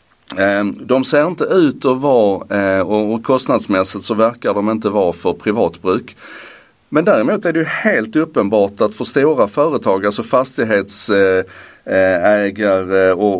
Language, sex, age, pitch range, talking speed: Swedish, male, 30-49, 95-125 Hz, 125 wpm